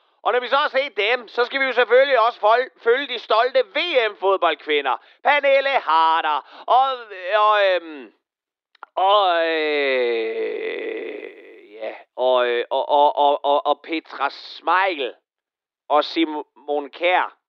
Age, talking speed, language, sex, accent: 40-59, 115 wpm, Danish, male, native